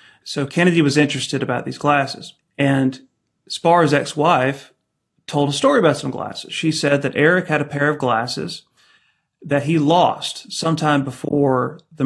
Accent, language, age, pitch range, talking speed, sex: American, English, 30-49, 135-160 Hz, 155 wpm, male